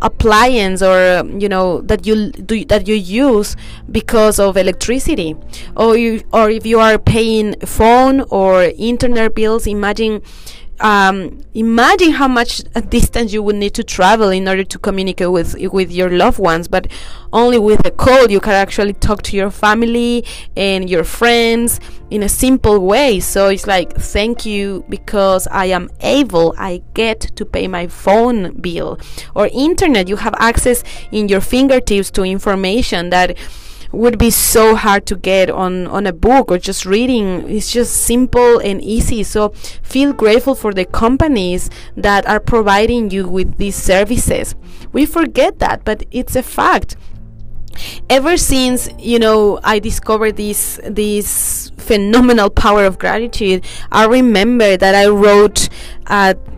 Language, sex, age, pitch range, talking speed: English, female, 20-39, 190-230 Hz, 155 wpm